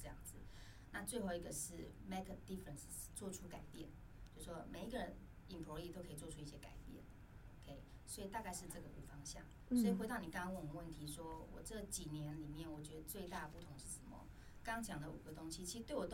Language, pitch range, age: Chinese, 145-180 Hz, 20-39